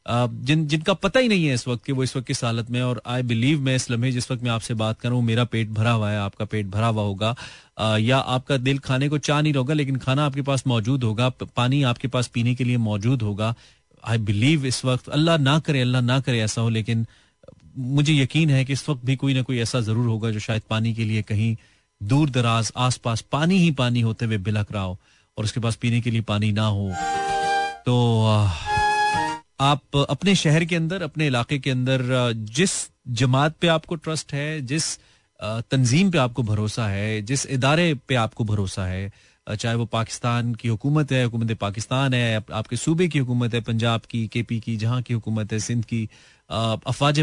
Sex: male